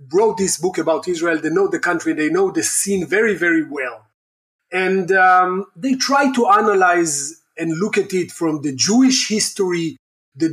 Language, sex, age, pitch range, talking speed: German, male, 30-49, 170-215 Hz, 175 wpm